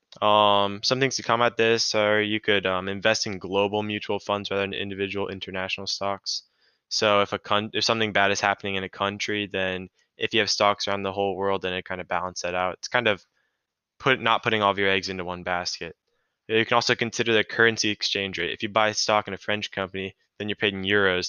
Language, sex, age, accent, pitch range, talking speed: English, male, 20-39, American, 95-110 Hz, 235 wpm